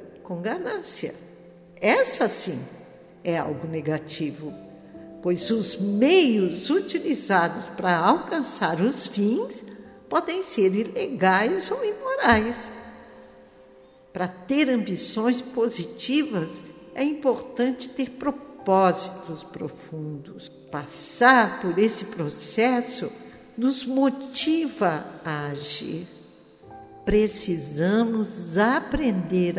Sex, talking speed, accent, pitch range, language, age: female, 80 wpm, Brazilian, 180-265 Hz, Portuguese, 60-79